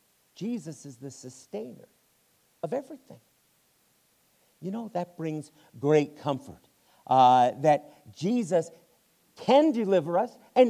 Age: 50-69